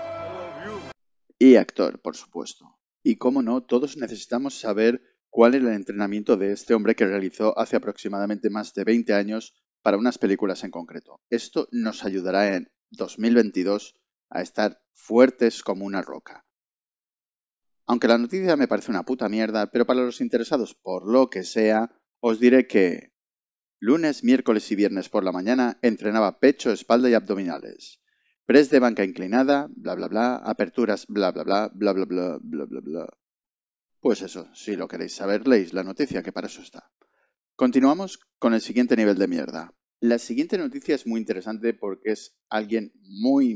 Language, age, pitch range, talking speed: Spanish, 30-49, 105-130 Hz, 165 wpm